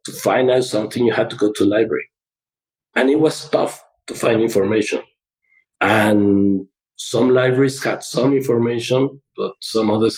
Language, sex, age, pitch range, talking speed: English, male, 50-69, 115-135 Hz, 145 wpm